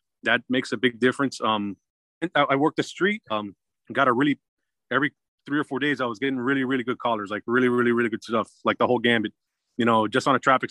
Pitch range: 110-135 Hz